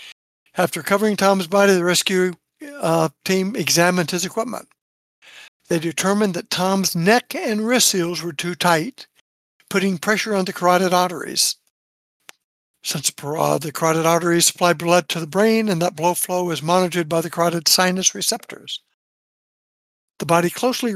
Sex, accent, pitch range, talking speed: male, American, 170-210 Hz, 150 wpm